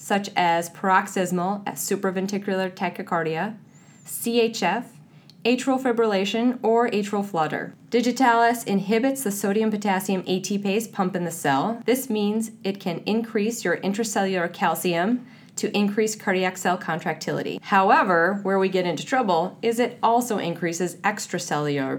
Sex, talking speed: female, 120 wpm